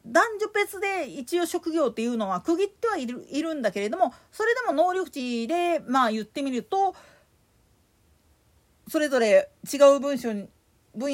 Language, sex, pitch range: Japanese, female, 245-365 Hz